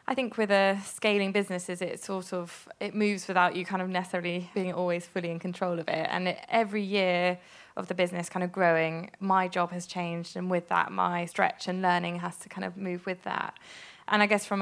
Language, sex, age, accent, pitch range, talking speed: English, female, 20-39, British, 175-200 Hz, 225 wpm